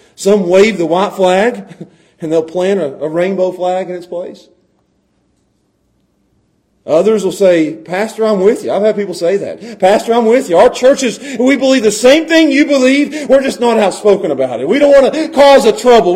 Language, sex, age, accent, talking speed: English, male, 40-59, American, 195 wpm